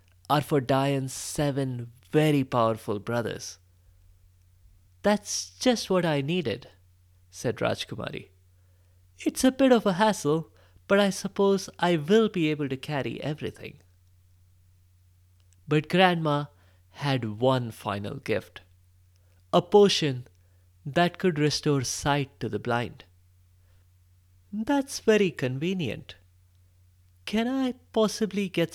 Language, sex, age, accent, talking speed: English, male, 30-49, Indian, 110 wpm